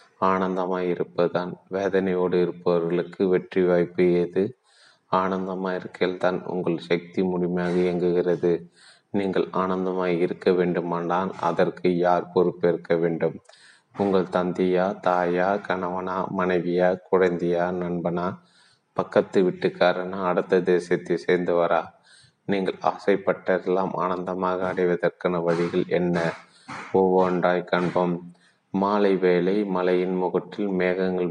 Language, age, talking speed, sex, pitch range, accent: Tamil, 30-49, 80 wpm, male, 85-95 Hz, native